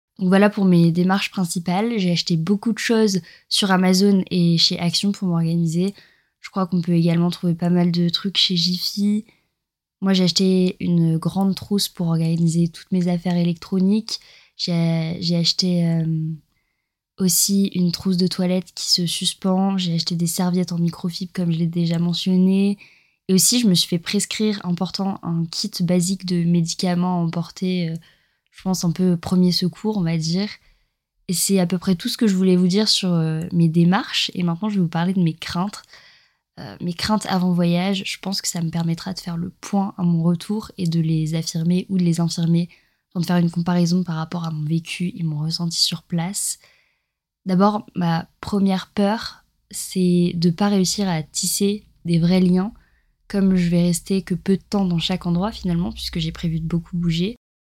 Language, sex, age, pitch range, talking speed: French, female, 20-39, 170-195 Hz, 195 wpm